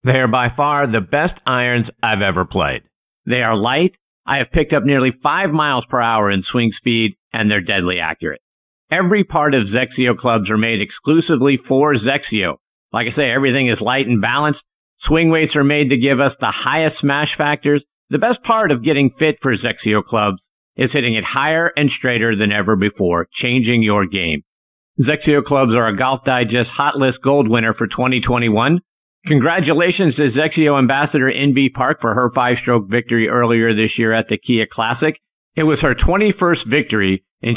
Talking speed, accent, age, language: 180 wpm, American, 50-69, English